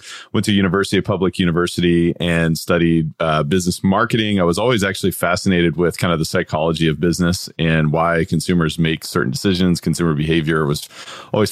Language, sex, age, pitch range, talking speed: English, male, 30-49, 85-95 Hz, 170 wpm